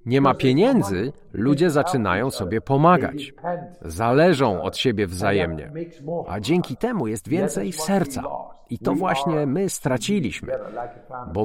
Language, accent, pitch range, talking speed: Polish, native, 125-175 Hz, 120 wpm